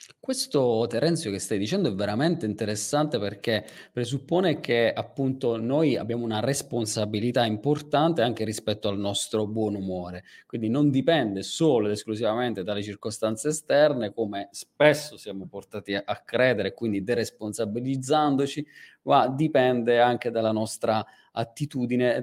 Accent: native